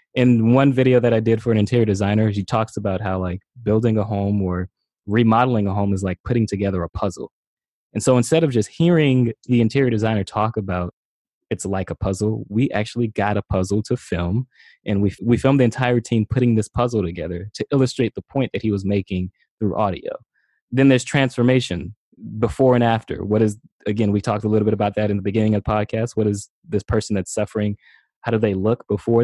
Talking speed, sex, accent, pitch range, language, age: 215 wpm, male, American, 100-120 Hz, English, 20-39